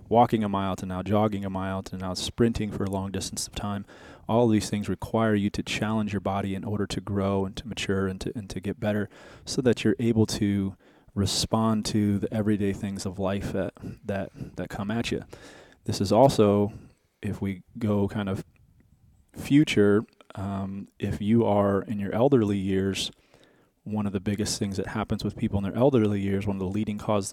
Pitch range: 95-110 Hz